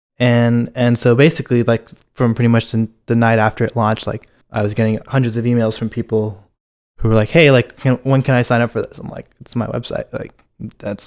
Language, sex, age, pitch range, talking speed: English, male, 20-39, 110-125 Hz, 230 wpm